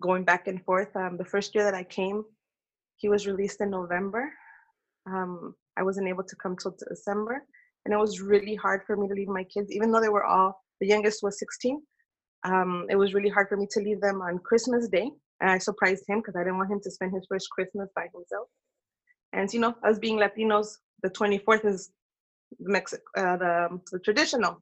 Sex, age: female, 20-39